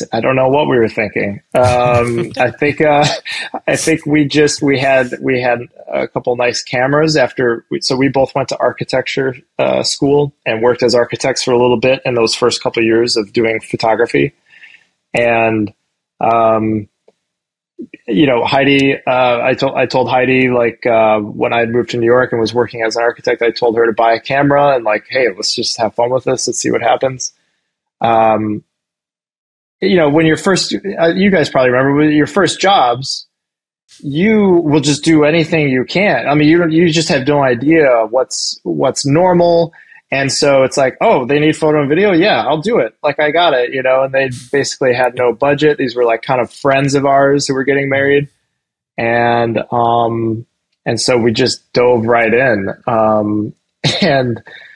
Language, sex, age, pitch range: English, male, 20-39, 120-145 Hz